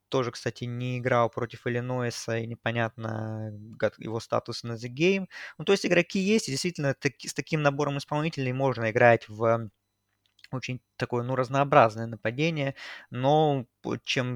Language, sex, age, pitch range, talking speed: Russian, male, 20-39, 115-135 Hz, 150 wpm